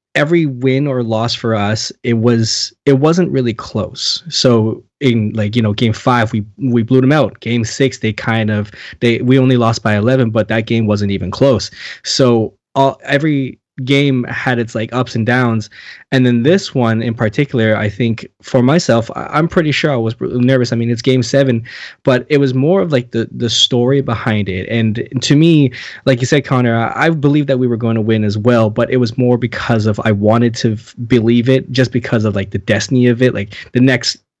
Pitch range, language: 110-130 Hz, English